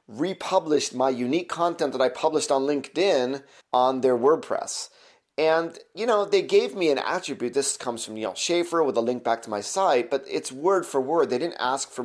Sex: male